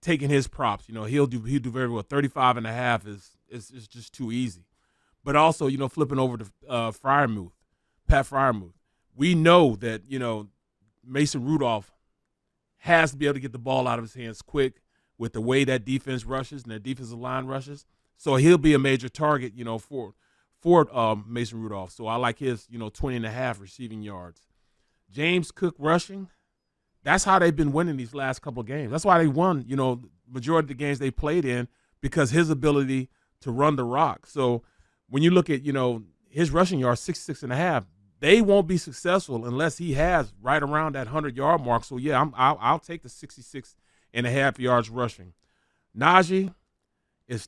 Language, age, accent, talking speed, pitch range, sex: English, 30-49, American, 205 wpm, 120-150 Hz, male